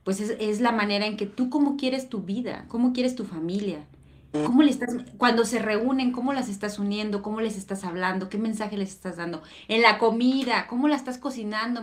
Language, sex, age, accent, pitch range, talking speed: Spanish, female, 30-49, Mexican, 195-245 Hz, 215 wpm